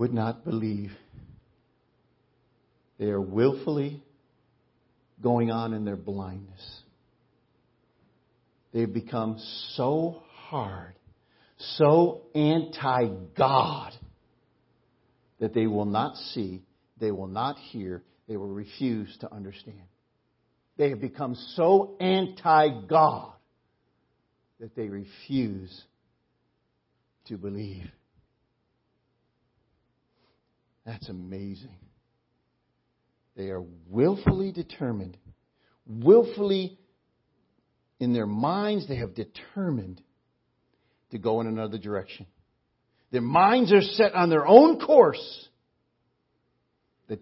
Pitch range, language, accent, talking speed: 100-140 Hz, English, American, 90 wpm